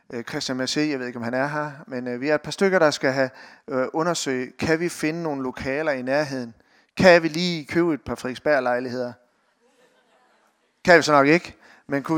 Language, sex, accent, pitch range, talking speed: Danish, male, native, 130-160 Hz, 195 wpm